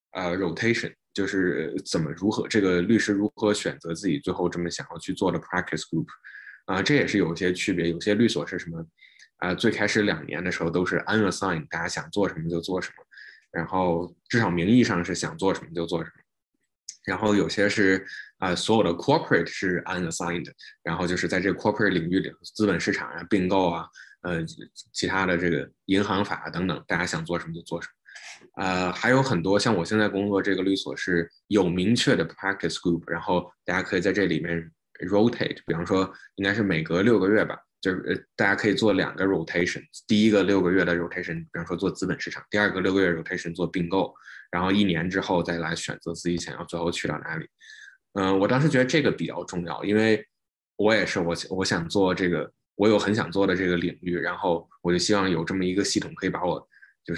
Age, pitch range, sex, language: 20-39, 85-100 Hz, male, Chinese